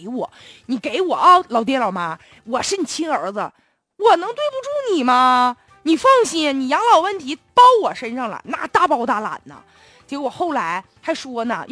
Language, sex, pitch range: Chinese, female, 240-385 Hz